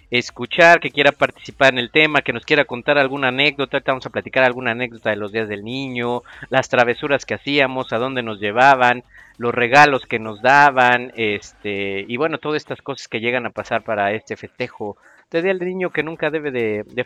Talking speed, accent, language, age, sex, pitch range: 210 wpm, Mexican, Spanish, 50-69, male, 115-145 Hz